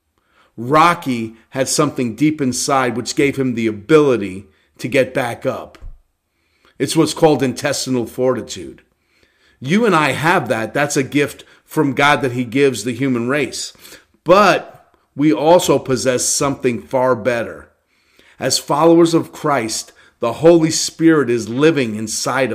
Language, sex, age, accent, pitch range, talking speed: English, male, 40-59, American, 120-160 Hz, 140 wpm